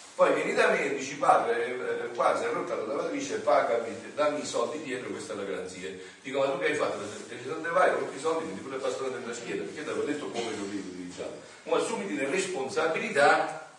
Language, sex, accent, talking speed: Italian, male, native, 235 wpm